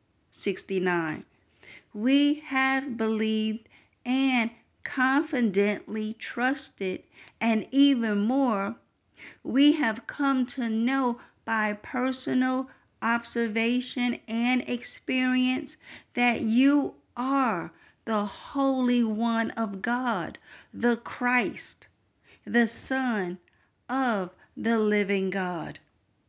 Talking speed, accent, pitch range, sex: 80 wpm, American, 190-250 Hz, female